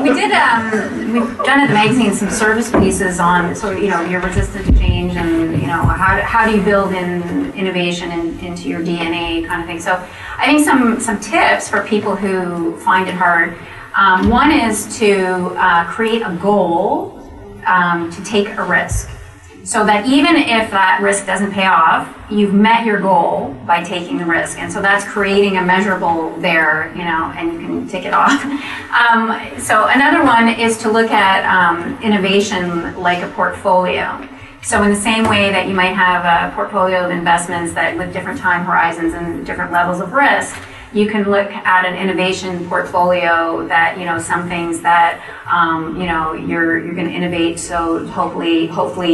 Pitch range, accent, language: 170-210 Hz, American, English